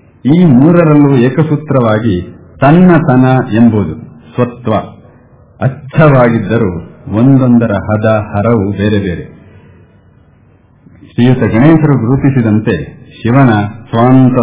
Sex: male